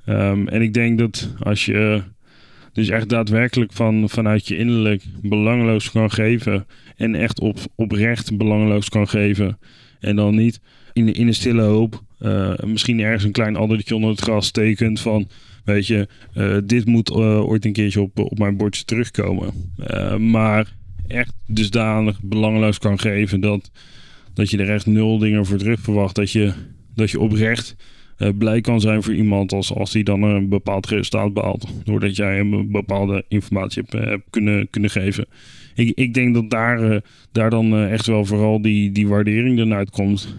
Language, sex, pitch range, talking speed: Dutch, male, 100-115 Hz, 180 wpm